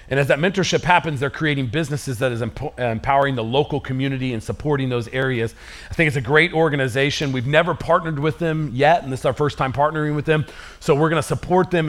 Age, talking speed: 40-59, 230 wpm